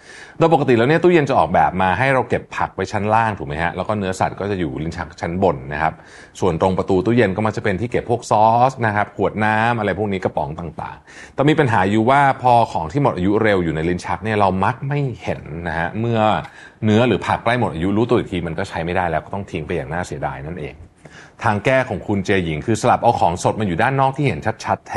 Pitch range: 85-115 Hz